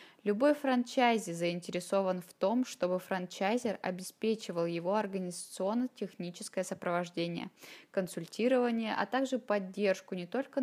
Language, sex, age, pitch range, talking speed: Russian, female, 20-39, 180-230 Hz, 95 wpm